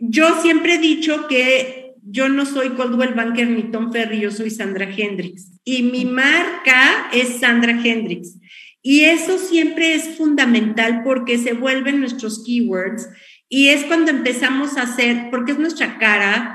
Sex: female